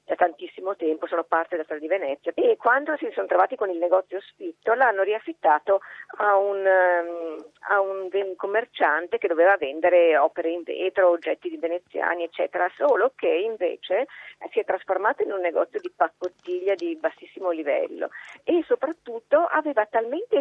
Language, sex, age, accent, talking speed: Italian, female, 40-59, native, 155 wpm